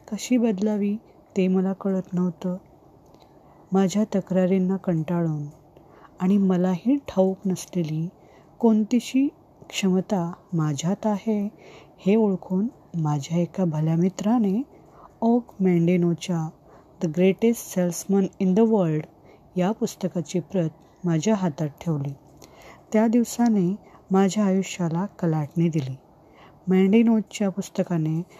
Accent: native